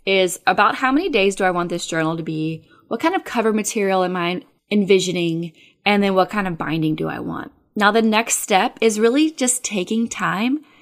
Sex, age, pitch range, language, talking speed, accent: female, 20-39, 175-215 Hz, English, 210 wpm, American